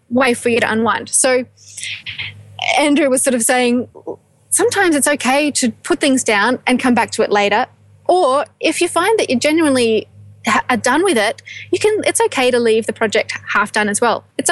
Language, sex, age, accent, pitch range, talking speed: English, female, 10-29, Australian, 225-295 Hz, 200 wpm